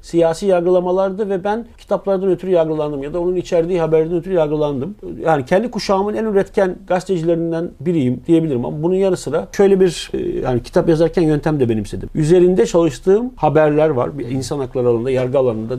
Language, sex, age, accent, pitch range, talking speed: Turkish, male, 50-69, native, 155-195 Hz, 170 wpm